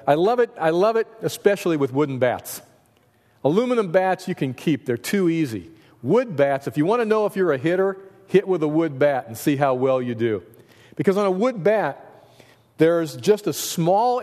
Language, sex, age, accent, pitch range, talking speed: English, male, 40-59, American, 130-190 Hz, 205 wpm